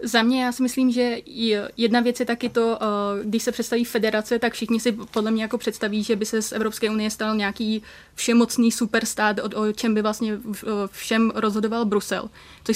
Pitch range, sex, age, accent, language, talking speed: 210-225 Hz, female, 20-39, native, Czech, 190 wpm